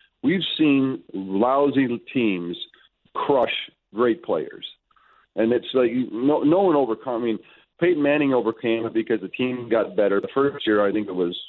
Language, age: English, 40-59